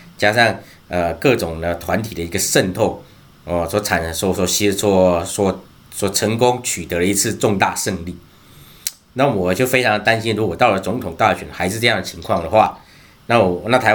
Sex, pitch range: male, 90-120 Hz